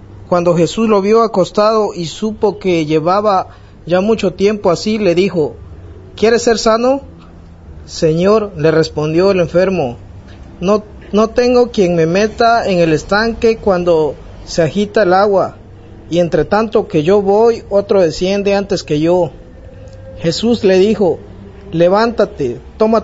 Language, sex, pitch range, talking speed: Spanish, male, 155-215 Hz, 140 wpm